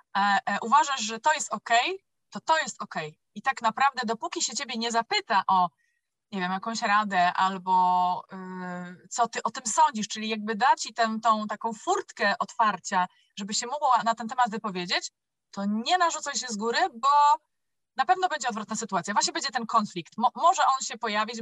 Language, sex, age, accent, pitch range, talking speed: Polish, female, 20-39, native, 215-275 Hz, 190 wpm